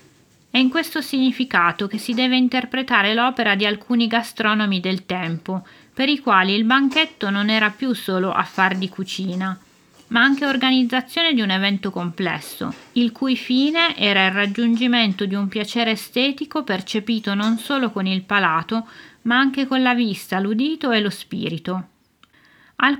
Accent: native